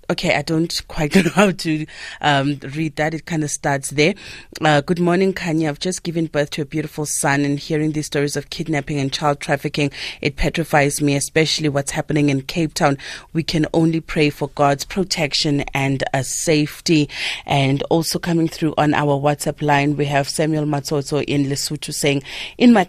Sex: female